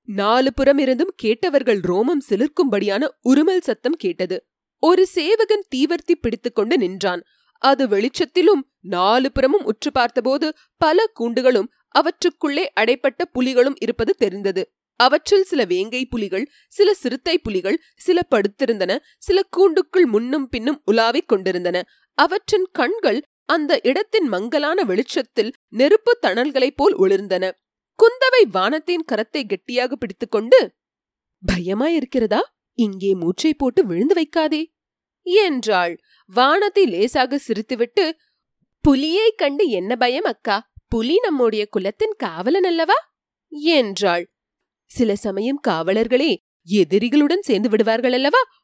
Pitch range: 220-350 Hz